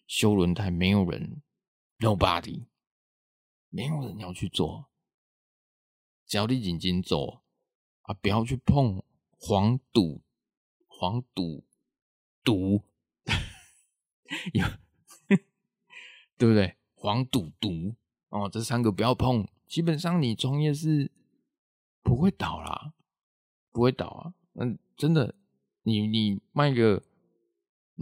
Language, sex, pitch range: Chinese, male, 100-145 Hz